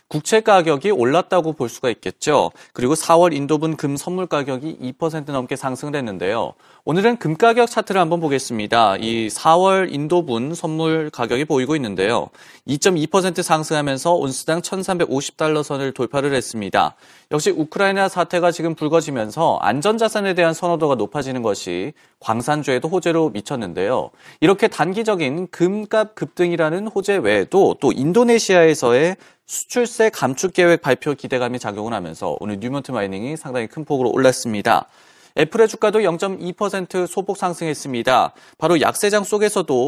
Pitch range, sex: 135-195 Hz, male